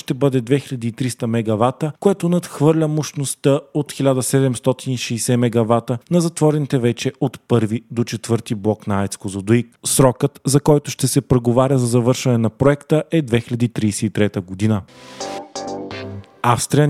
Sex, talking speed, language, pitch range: male, 125 wpm, Bulgarian, 115-140 Hz